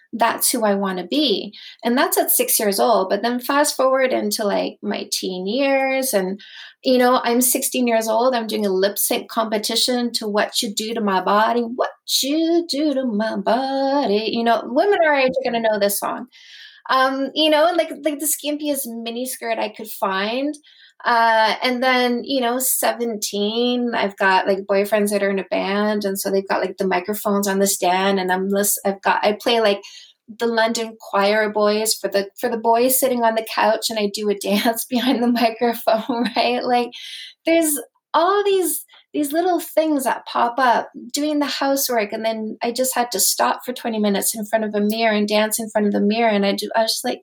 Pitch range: 215-290 Hz